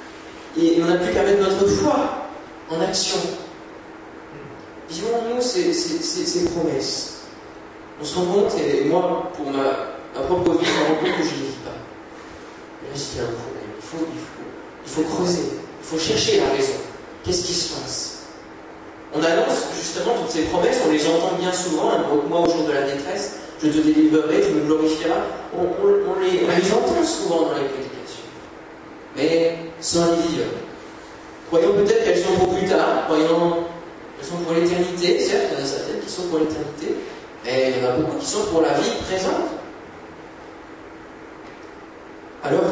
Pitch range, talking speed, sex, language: 155-240 Hz, 185 wpm, male, French